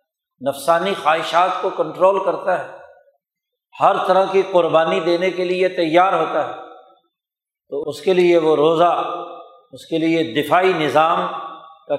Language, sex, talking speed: Urdu, male, 140 wpm